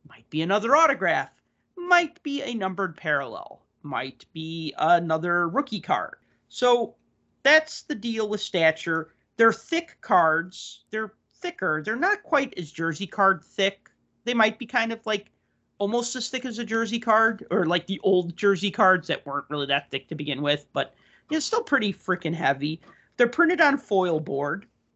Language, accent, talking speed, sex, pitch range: English, American, 170 wpm, male, 160-225 Hz